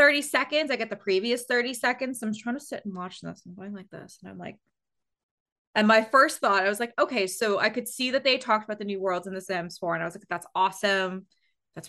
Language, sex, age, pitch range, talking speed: English, female, 20-39, 175-225 Hz, 275 wpm